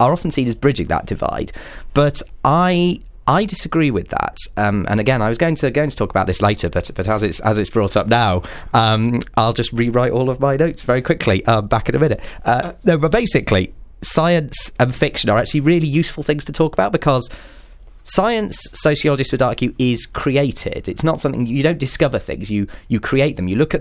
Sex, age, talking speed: male, 30-49, 215 wpm